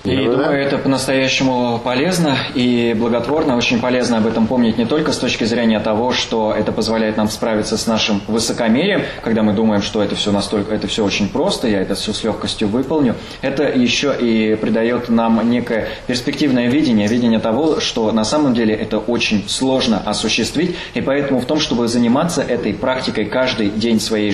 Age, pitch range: 20-39, 110-125 Hz